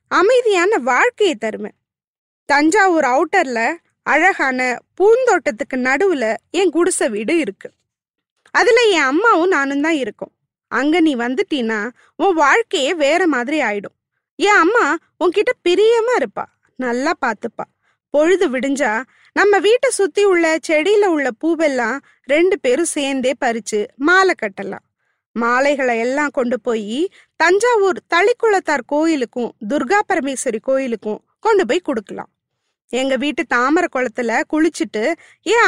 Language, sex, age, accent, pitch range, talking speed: Tamil, female, 20-39, native, 260-380 Hz, 85 wpm